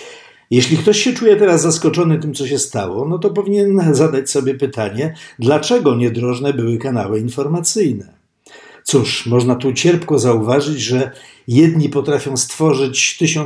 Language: Polish